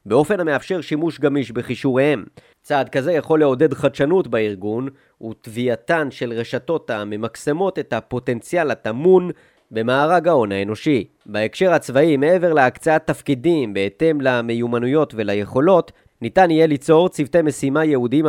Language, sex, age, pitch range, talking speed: Hebrew, male, 30-49, 120-160 Hz, 115 wpm